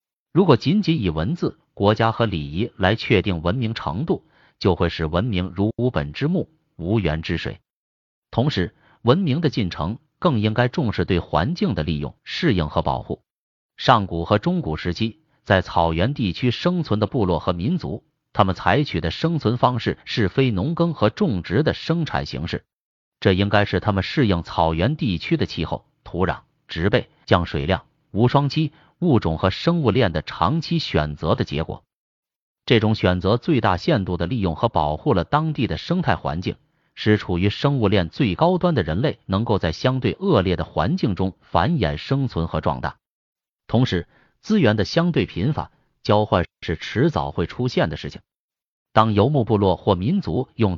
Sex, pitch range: male, 90-140 Hz